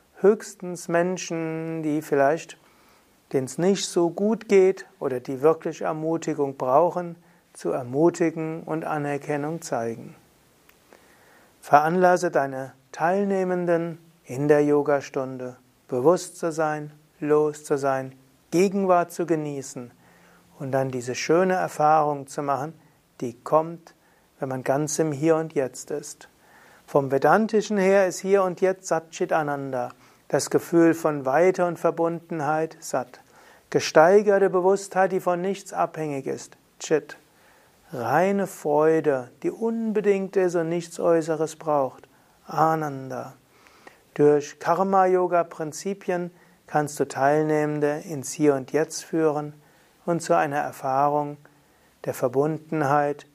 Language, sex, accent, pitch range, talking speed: German, male, German, 145-175 Hz, 110 wpm